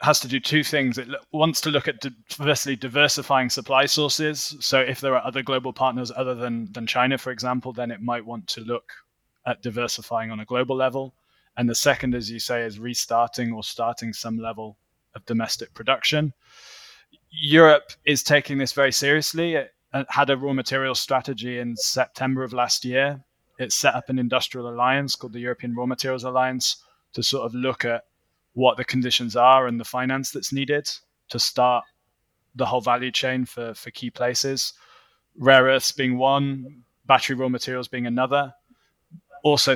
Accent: British